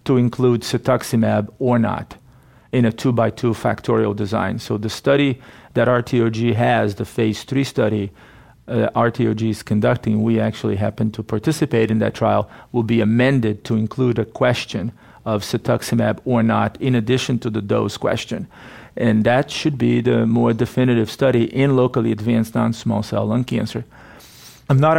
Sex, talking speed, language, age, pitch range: male, 160 wpm, English, 40-59, 110-125 Hz